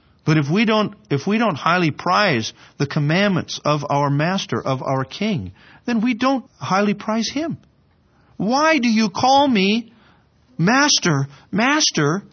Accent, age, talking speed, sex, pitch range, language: American, 50-69, 145 wpm, male, 155-235 Hz, English